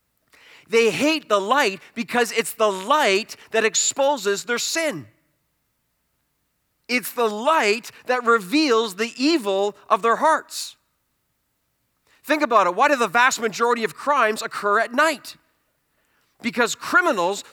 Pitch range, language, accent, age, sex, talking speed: 195-255 Hz, English, American, 40-59, male, 125 wpm